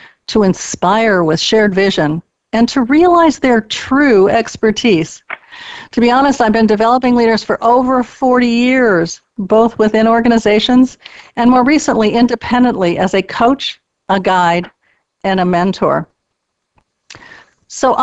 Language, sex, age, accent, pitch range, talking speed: English, female, 50-69, American, 195-260 Hz, 125 wpm